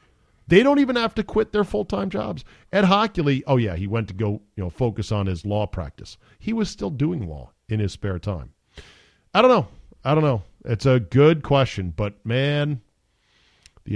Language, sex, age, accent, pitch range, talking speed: English, male, 40-59, American, 105-150 Hz, 200 wpm